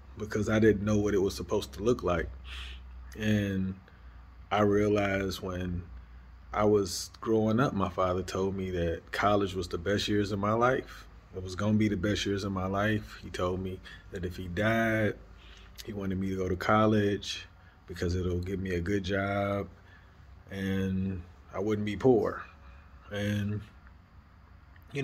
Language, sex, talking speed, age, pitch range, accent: English, male, 170 wpm, 30-49, 90-110 Hz, American